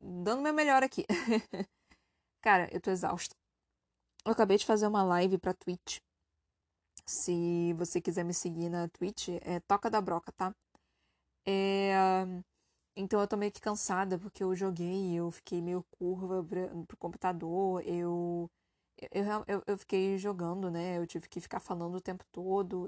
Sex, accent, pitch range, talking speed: female, Brazilian, 175-200 Hz, 155 wpm